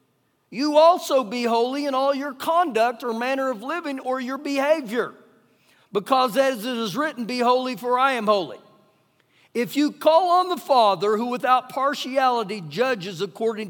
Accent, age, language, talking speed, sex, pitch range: American, 50-69, English, 160 wpm, male, 210-280 Hz